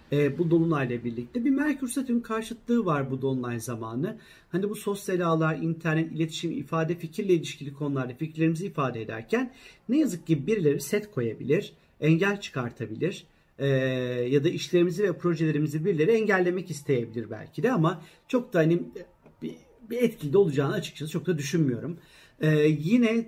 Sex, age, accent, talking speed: male, 40-59, native, 150 wpm